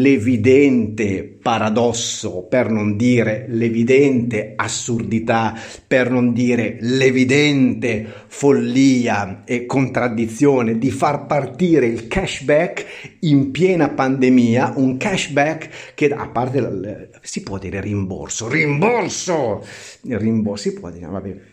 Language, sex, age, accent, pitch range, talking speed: Italian, male, 50-69, native, 115-150 Hz, 105 wpm